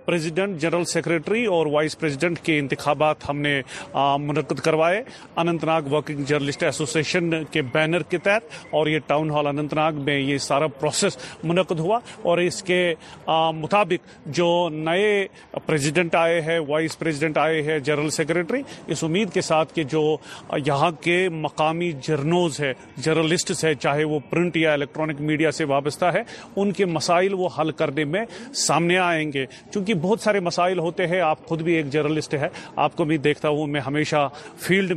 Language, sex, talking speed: Urdu, male, 165 wpm